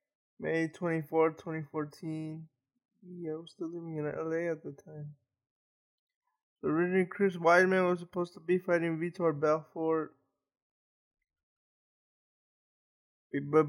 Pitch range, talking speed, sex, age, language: 150-175 Hz, 105 wpm, male, 20-39, English